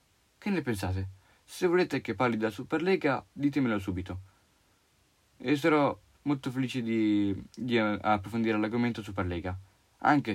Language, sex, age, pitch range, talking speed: Italian, male, 30-49, 100-145 Hz, 120 wpm